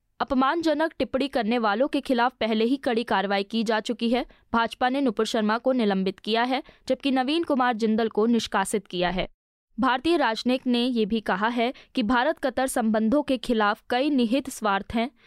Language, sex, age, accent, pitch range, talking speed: Hindi, female, 20-39, native, 220-270 Hz, 185 wpm